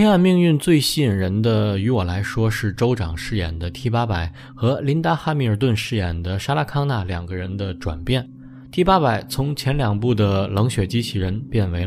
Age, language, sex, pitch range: 20-39, Chinese, male, 100-140 Hz